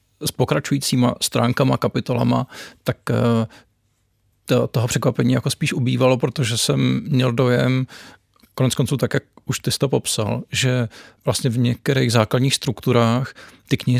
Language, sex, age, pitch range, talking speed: Czech, male, 40-59, 110-130 Hz, 130 wpm